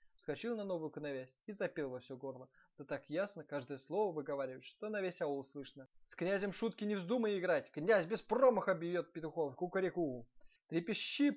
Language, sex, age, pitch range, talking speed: Russian, male, 20-39, 140-210 Hz, 175 wpm